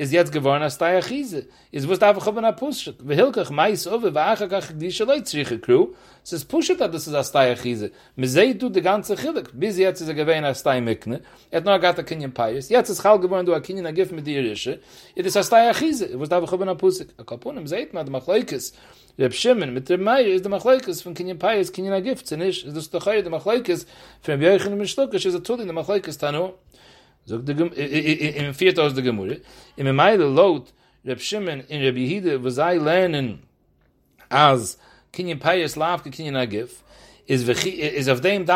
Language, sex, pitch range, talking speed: English, male, 140-200 Hz, 65 wpm